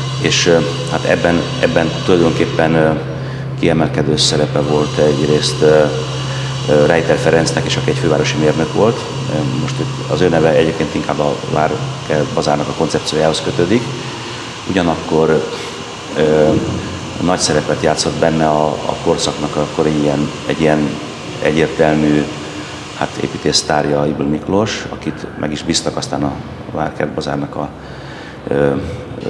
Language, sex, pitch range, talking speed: Hungarian, male, 75-85 Hz, 125 wpm